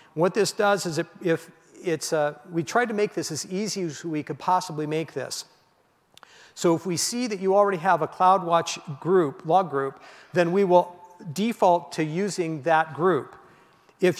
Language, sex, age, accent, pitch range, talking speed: English, male, 50-69, American, 155-185 Hz, 180 wpm